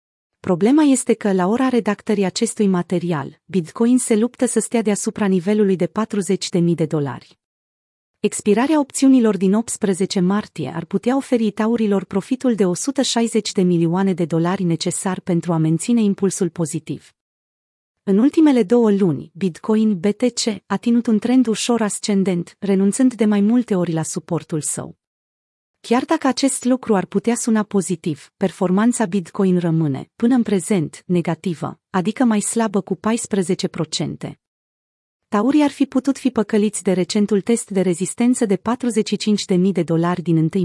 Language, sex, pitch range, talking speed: Romanian, female, 175-225 Hz, 145 wpm